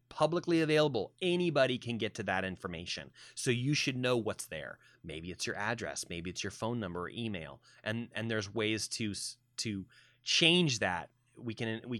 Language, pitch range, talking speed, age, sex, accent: English, 100-135 Hz, 180 wpm, 30-49, male, American